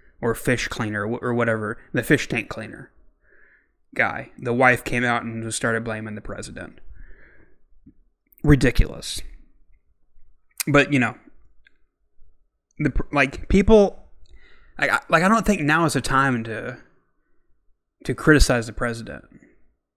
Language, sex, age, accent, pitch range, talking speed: English, male, 20-39, American, 110-145 Hz, 125 wpm